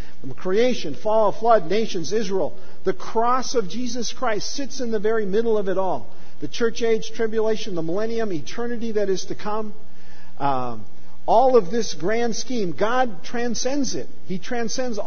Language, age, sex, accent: English, 50-69, male, American